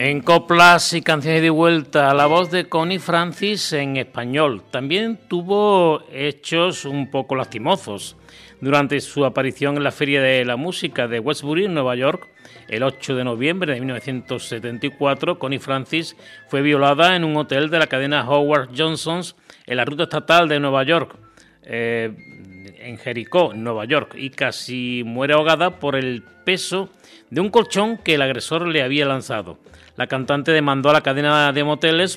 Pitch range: 130-165 Hz